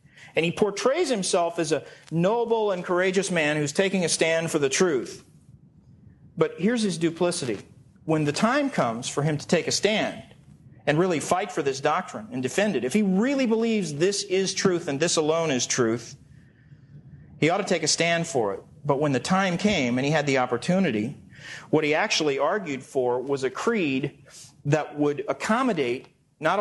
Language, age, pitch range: English, 40-59, 140-180 Hz